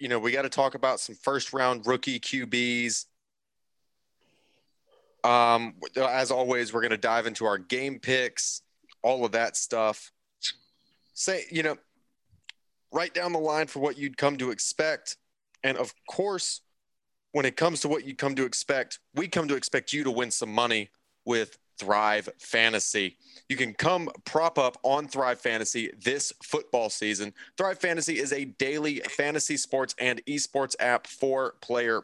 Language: English